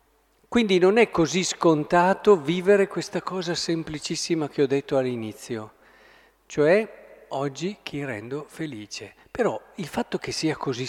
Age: 50-69